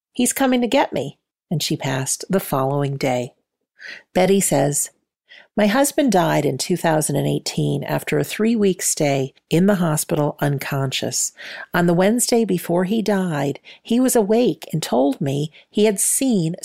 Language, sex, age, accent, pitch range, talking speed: English, female, 50-69, American, 145-205 Hz, 150 wpm